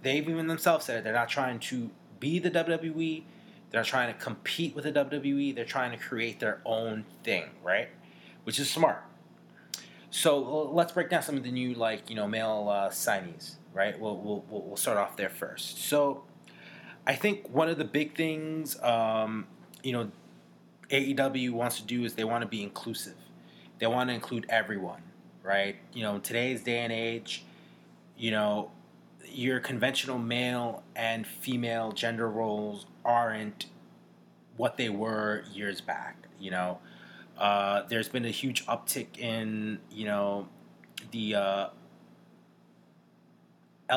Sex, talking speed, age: male, 155 wpm, 20-39